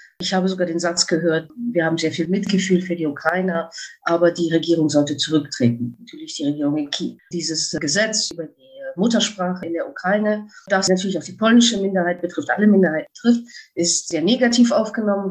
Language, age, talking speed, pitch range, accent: English, 50-69, 180 wpm, 165-215 Hz, German